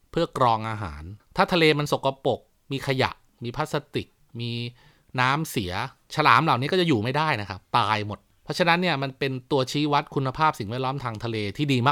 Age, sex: 20-39, male